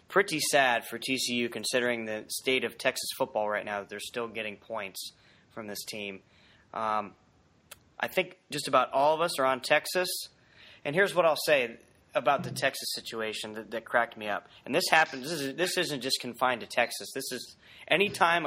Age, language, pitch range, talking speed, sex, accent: 30-49, English, 110-150 Hz, 200 wpm, male, American